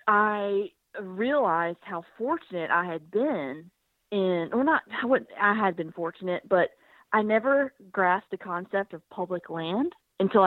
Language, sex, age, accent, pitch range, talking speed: English, female, 30-49, American, 175-230 Hz, 150 wpm